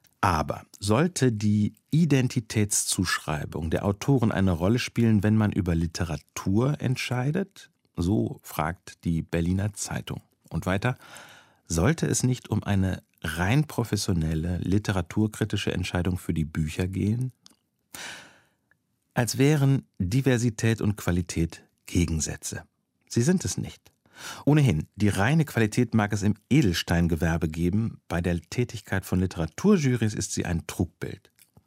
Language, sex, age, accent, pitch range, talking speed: German, male, 50-69, German, 90-125 Hz, 115 wpm